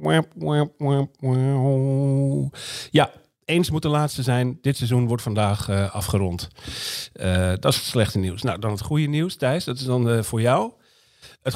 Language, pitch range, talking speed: Dutch, 105-135 Hz, 160 wpm